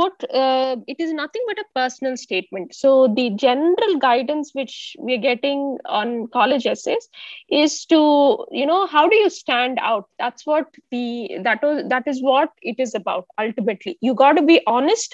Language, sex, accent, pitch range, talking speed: Tamil, female, native, 235-300 Hz, 175 wpm